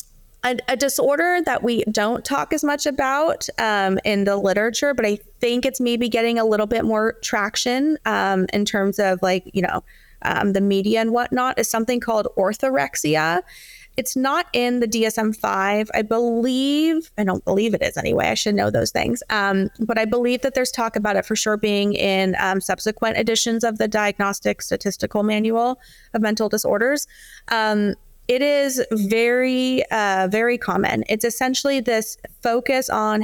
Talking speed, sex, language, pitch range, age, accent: 170 wpm, female, English, 200-245 Hz, 30-49, American